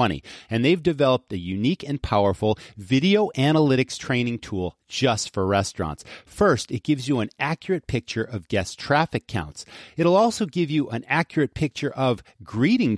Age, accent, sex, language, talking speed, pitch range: 40-59, American, male, English, 155 wpm, 100-155 Hz